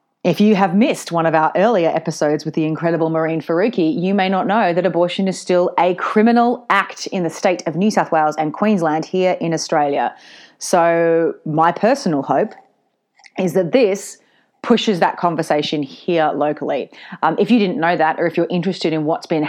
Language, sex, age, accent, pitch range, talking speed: English, female, 30-49, Australian, 155-195 Hz, 190 wpm